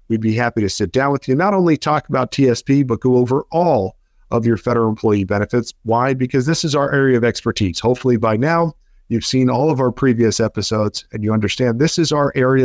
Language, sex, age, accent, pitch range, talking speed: English, male, 40-59, American, 115-150 Hz, 225 wpm